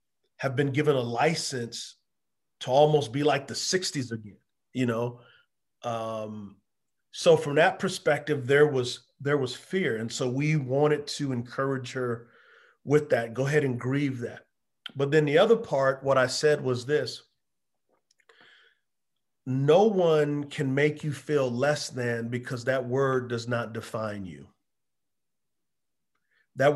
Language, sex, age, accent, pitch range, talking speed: English, male, 40-59, American, 120-145 Hz, 140 wpm